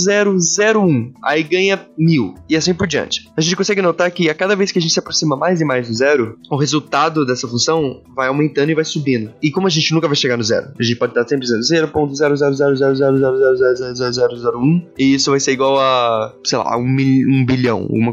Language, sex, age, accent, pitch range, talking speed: Portuguese, male, 20-39, Brazilian, 130-160 Hz, 205 wpm